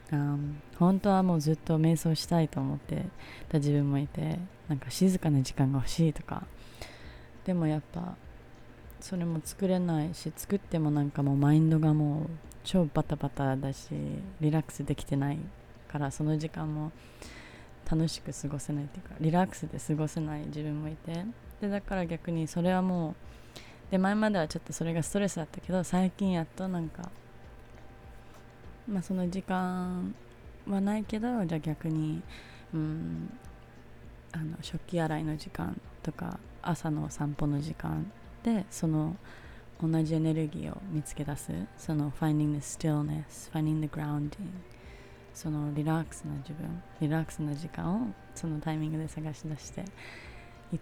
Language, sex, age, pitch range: Japanese, female, 20-39, 150-175 Hz